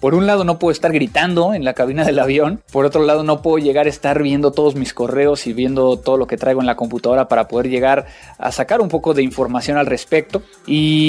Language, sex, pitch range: Spanish, male, 130-170 Hz